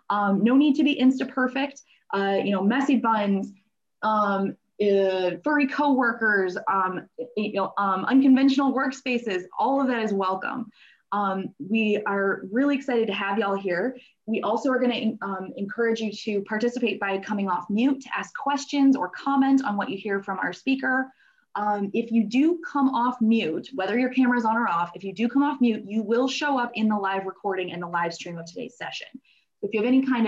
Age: 20-39